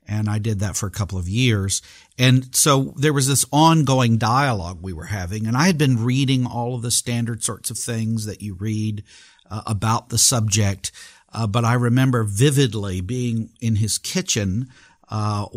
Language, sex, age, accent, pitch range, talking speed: English, male, 50-69, American, 105-135 Hz, 185 wpm